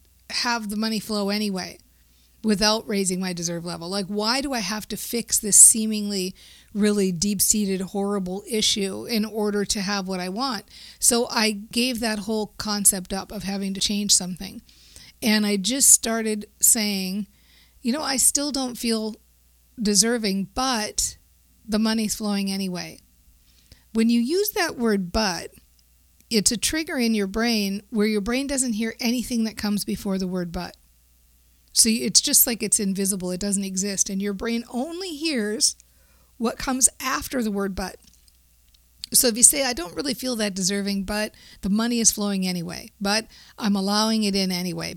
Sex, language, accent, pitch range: female, English, American, 190-225 Hz